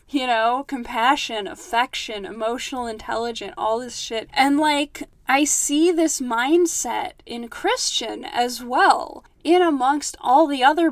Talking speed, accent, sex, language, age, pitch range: 130 wpm, American, female, English, 10-29, 230-280 Hz